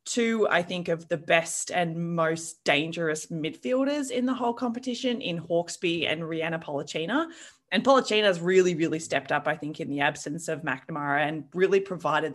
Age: 20-39